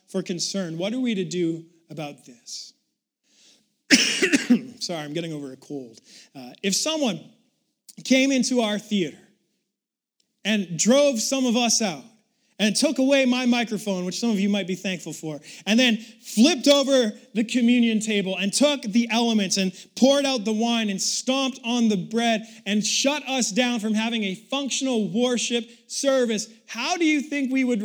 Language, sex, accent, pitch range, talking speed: English, male, American, 210-255 Hz, 170 wpm